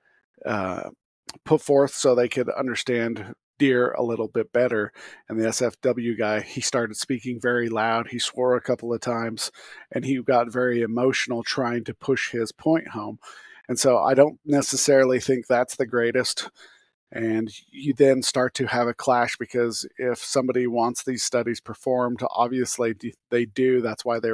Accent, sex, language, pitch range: American, male, English, 115-130 Hz